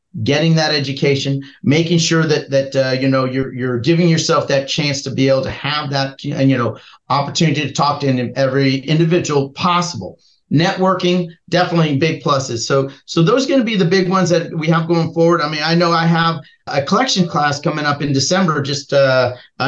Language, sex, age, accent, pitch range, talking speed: English, male, 40-59, American, 145-190 Hz, 200 wpm